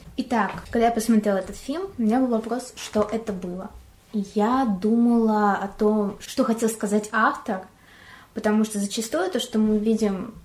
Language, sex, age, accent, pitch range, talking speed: Russian, female, 20-39, native, 195-225 Hz, 160 wpm